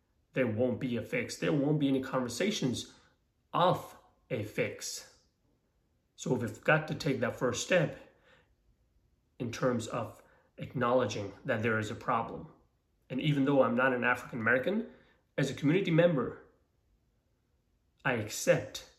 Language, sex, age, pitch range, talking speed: English, male, 30-49, 125-150 Hz, 135 wpm